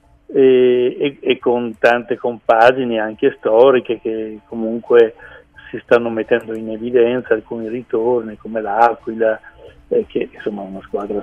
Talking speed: 130 wpm